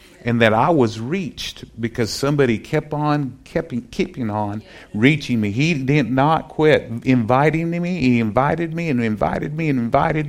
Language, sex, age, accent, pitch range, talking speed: English, male, 50-69, American, 115-145 Hz, 170 wpm